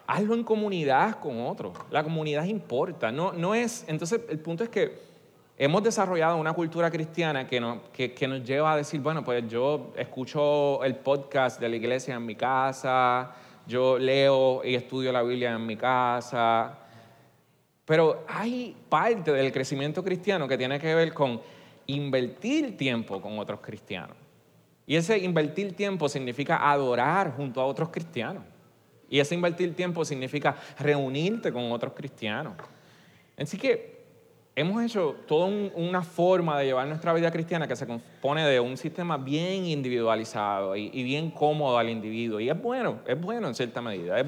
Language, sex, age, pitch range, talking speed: Spanish, male, 30-49, 125-165 Hz, 160 wpm